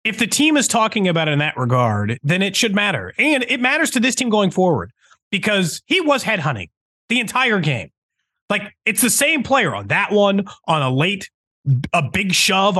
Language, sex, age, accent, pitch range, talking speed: English, male, 30-49, American, 160-235 Hz, 200 wpm